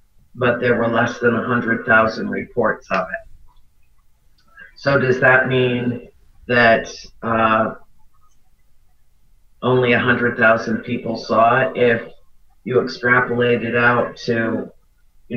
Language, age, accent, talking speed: English, 40-59, American, 105 wpm